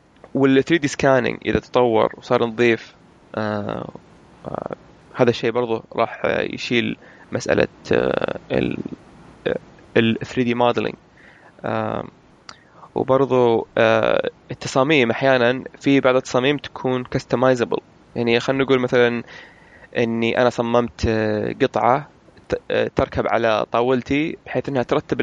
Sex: male